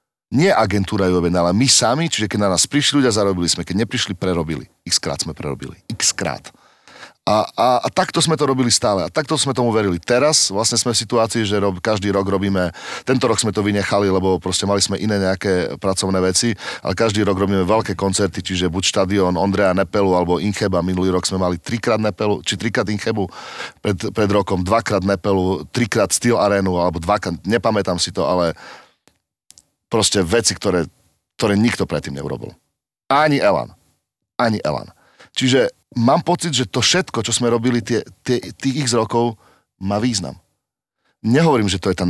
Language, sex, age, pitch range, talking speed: Slovak, male, 40-59, 95-120 Hz, 180 wpm